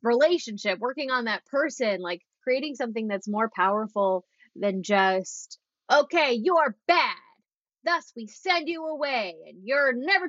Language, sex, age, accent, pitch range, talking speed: English, female, 20-39, American, 190-250 Hz, 140 wpm